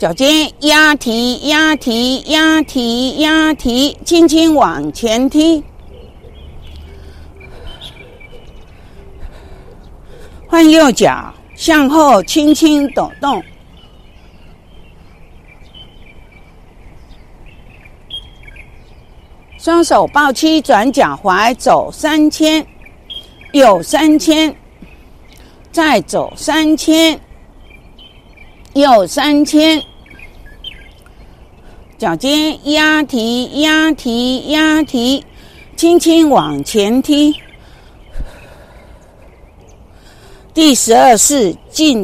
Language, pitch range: Chinese, 240-310 Hz